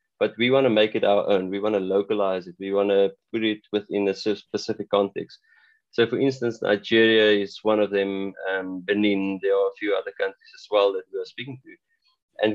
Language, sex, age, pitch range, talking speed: English, male, 20-39, 100-135 Hz, 220 wpm